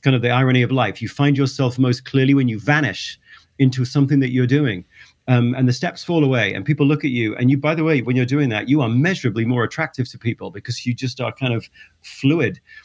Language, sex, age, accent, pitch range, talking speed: English, male, 40-59, British, 125-170 Hz, 245 wpm